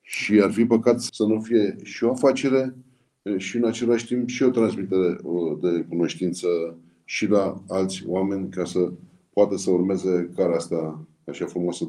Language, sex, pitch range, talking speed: Romanian, male, 90-105 Hz, 160 wpm